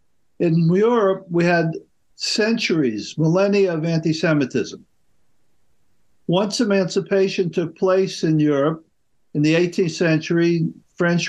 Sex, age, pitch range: male, 50-69, 155-180 Hz